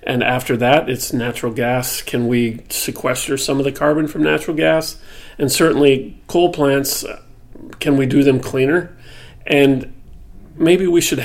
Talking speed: 155 wpm